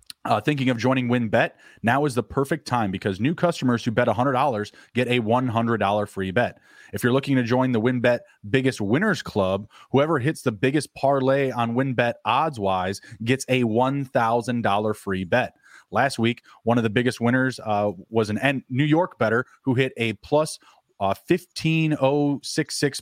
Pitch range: 110-130 Hz